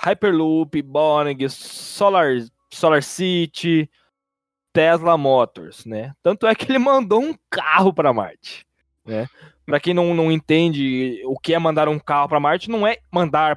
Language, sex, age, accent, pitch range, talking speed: Portuguese, male, 20-39, Brazilian, 120-175 Hz, 150 wpm